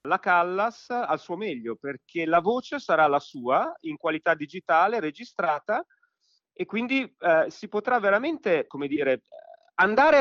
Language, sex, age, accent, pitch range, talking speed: Italian, male, 40-59, native, 140-225 Hz, 140 wpm